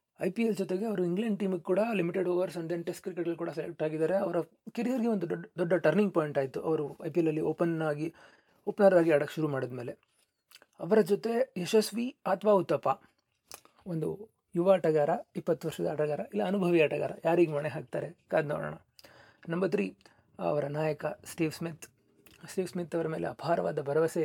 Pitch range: 155-190 Hz